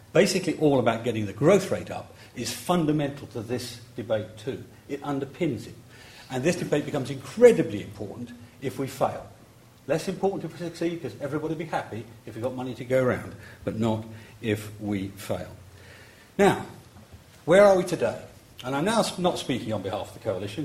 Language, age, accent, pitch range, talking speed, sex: English, 50-69, British, 110-150 Hz, 185 wpm, male